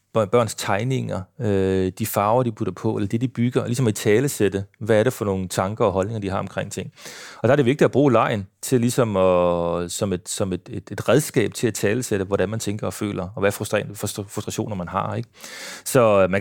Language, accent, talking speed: Danish, native, 230 wpm